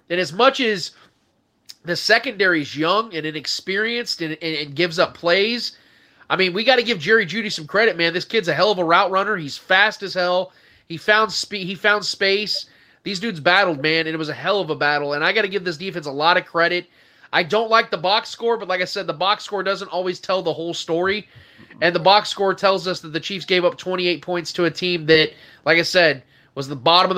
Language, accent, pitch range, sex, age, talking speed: English, American, 165-205 Hz, male, 30-49, 245 wpm